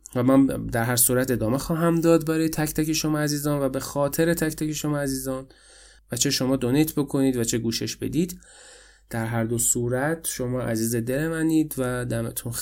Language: Persian